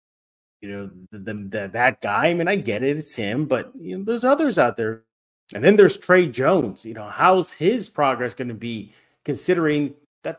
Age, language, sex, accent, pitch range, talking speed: 30-49, English, male, American, 110-160 Hz, 180 wpm